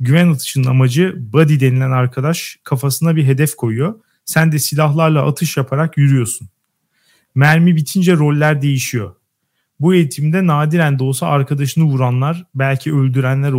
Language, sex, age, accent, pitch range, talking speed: Turkish, male, 40-59, native, 130-160 Hz, 130 wpm